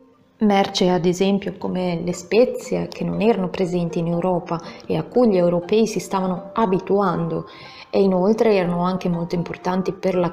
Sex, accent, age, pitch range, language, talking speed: female, native, 20-39, 175-215 Hz, Italian, 165 wpm